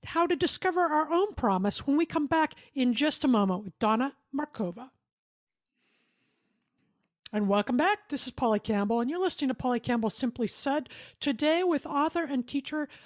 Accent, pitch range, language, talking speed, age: American, 230-305 Hz, English, 170 wpm, 50-69